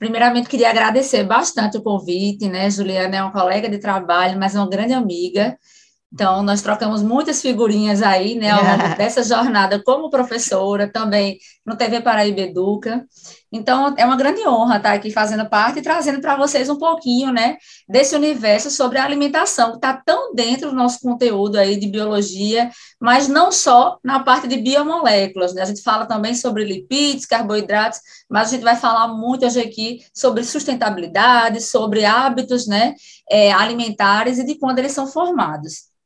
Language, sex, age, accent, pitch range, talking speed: Portuguese, female, 20-39, Brazilian, 205-260 Hz, 170 wpm